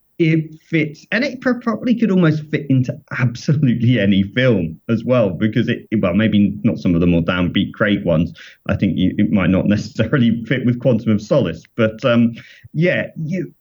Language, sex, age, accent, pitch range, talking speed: English, male, 40-59, British, 110-140 Hz, 180 wpm